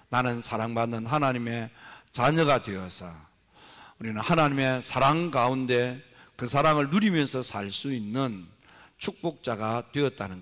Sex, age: male, 50-69